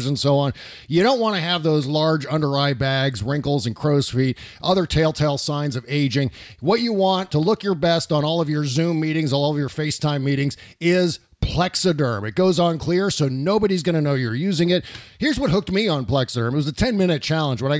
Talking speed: 225 wpm